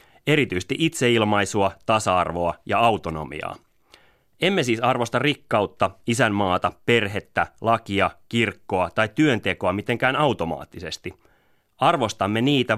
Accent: native